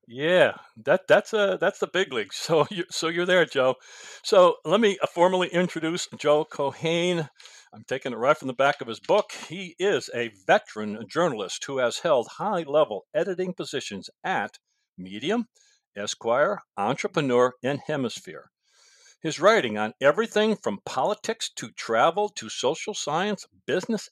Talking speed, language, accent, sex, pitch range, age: 155 wpm, English, American, male, 130-195 Hz, 60-79